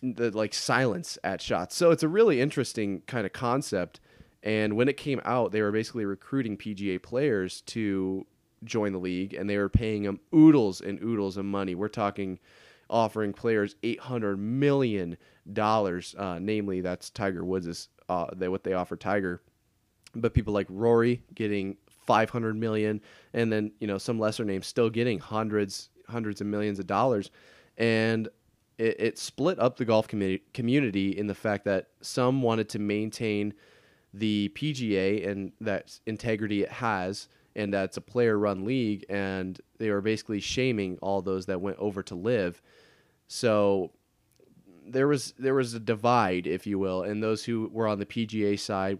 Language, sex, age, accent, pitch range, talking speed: English, male, 30-49, American, 100-115 Hz, 165 wpm